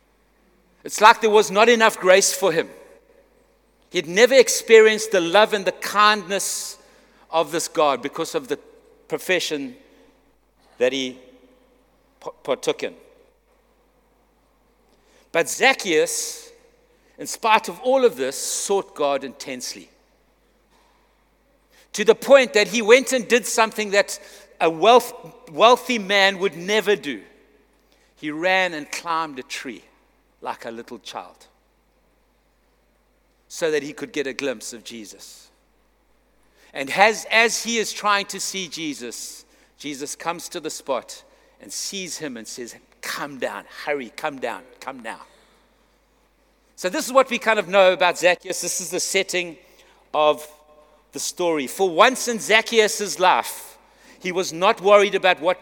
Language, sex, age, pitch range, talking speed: English, male, 60-79, 165-240 Hz, 140 wpm